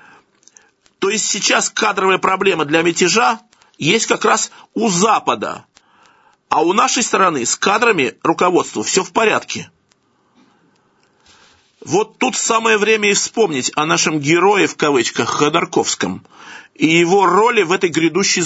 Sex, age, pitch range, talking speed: male, 50-69, 180-225 Hz, 130 wpm